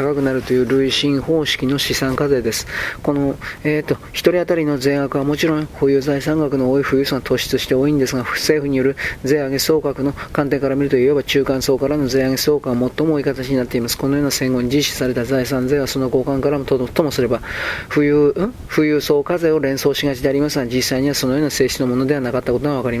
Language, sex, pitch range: Japanese, male, 130-145 Hz